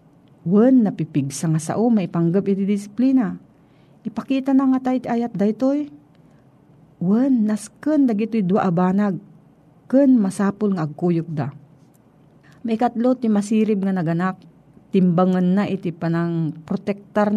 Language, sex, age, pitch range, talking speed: Filipino, female, 40-59, 160-215 Hz, 125 wpm